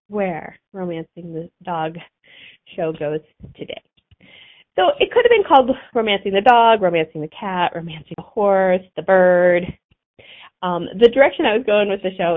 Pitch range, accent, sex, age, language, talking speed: 170-220 Hz, American, female, 30-49, English, 160 wpm